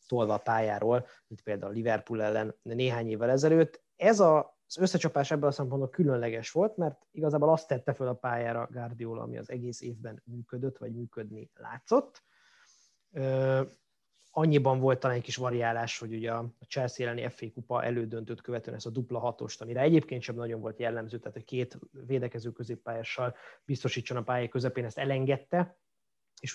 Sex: male